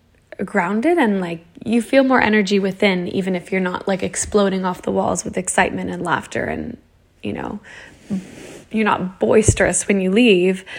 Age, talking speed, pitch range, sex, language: 10-29, 165 wpm, 185-215 Hz, female, English